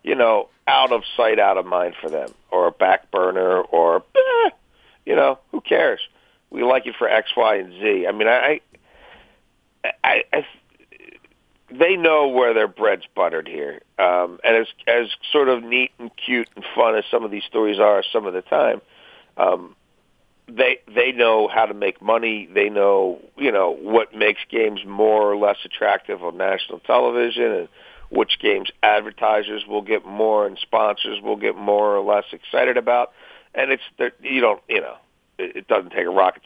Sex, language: male, English